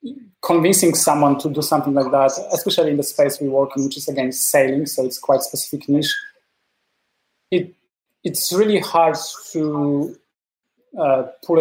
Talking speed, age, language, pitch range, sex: 160 wpm, 20-39, English, 140-160 Hz, male